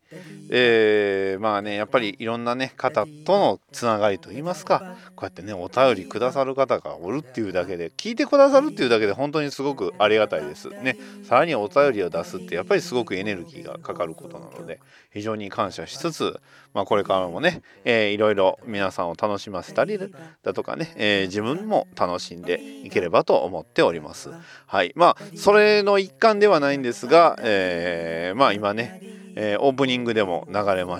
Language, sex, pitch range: Japanese, male, 100-160 Hz